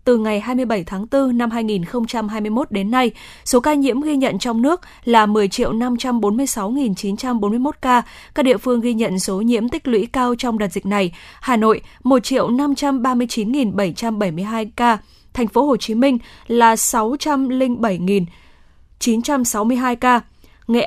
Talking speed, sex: 130 wpm, female